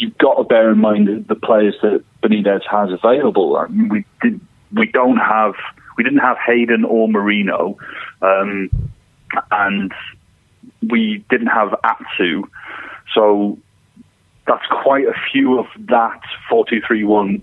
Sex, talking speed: male, 135 wpm